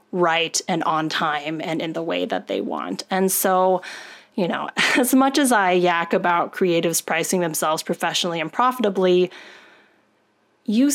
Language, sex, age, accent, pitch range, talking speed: English, female, 30-49, American, 180-250 Hz, 155 wpm